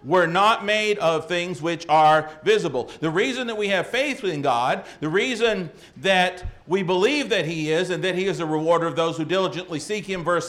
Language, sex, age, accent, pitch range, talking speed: English, male, 50-69, American, 150-215 Hz, 210 wpm